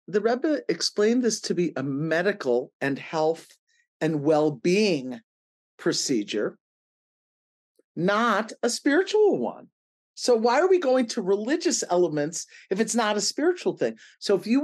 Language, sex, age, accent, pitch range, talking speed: English, male, 50-69, American, 150-245 Hz, 140 wpm